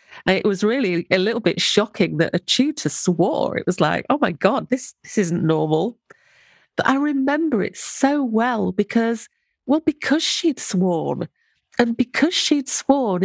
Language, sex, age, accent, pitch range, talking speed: English, female, 40-59, British, 190-265 Hz, 165 wpm